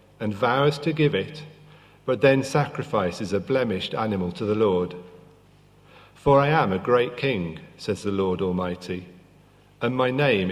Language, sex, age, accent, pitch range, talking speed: English, male, 50-69, British, 100-140 Hz, 155 wpm